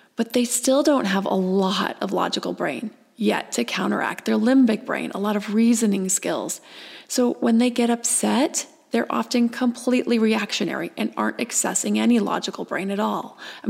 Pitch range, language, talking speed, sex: 200-245 Hz, English, 170 wpm, female